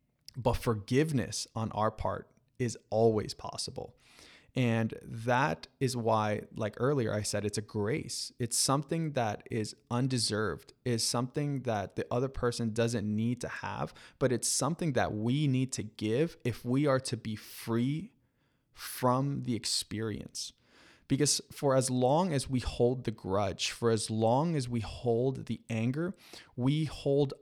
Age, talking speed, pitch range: 20-39, 155 wpm, 110-135 Hz